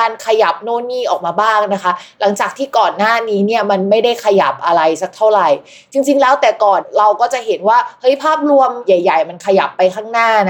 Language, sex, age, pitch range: Thai, female, 20-39, 190-255 Hz